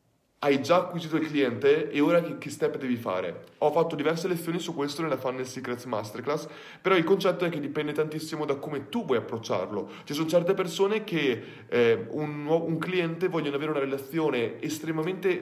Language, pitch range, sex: Italian, 140-185 Hz, male